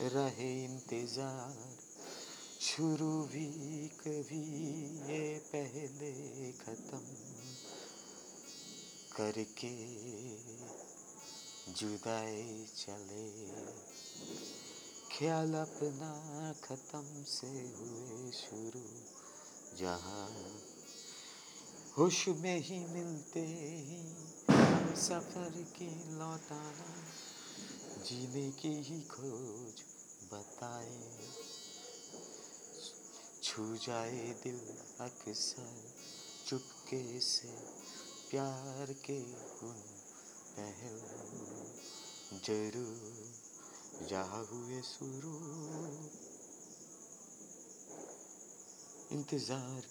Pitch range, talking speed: 110-150 Hz, 40 wpm